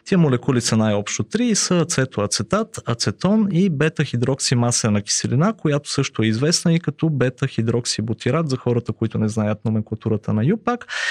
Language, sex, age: Bulgarian, male, 30-49